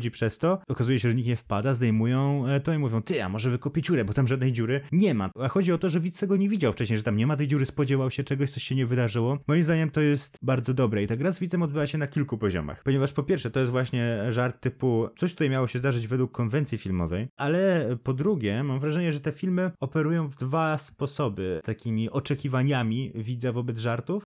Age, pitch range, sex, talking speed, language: 20-39, 120-150 Hz, male, 235 wpm, Polish